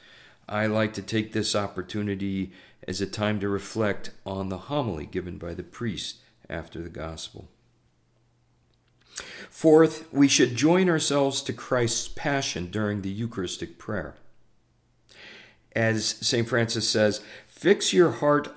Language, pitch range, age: English, 100-135 Hz, 50-69